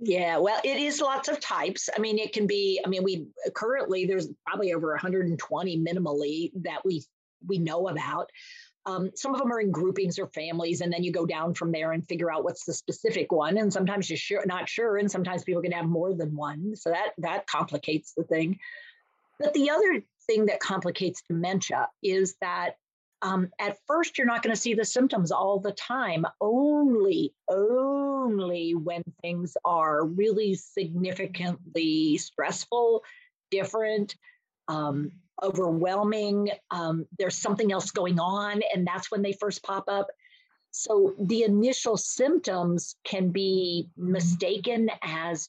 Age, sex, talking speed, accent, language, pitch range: 40-59, female, 160 wpm, American, English, 175-215 Hz